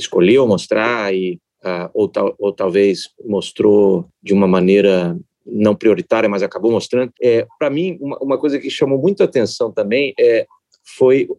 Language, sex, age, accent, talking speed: Portuguese, male, 40-59, Brazilian, 160 wpm